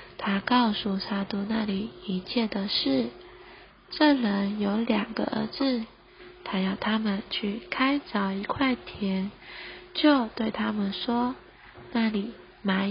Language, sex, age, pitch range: Chinese, female, 20-39, 200-255 Hz